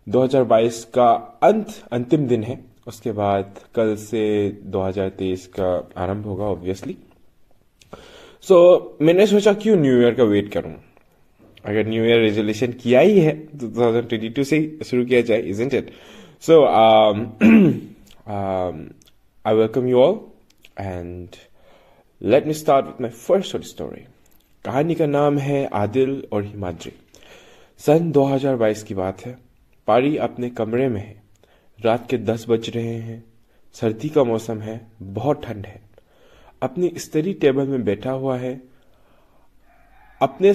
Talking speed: 135 wpm